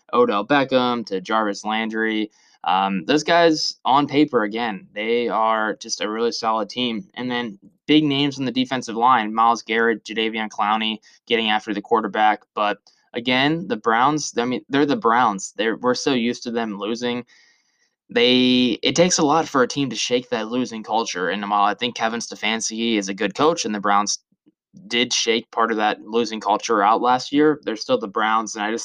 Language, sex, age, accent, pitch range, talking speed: English, male, 20-39, American, 105-125 Hz, 190 wpm